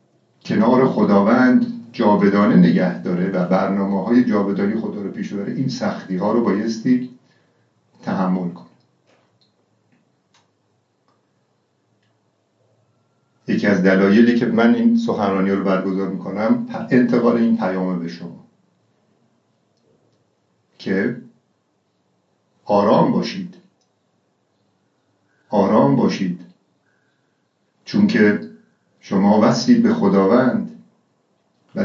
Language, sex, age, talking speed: Persian, male, 50-69, 85 wpm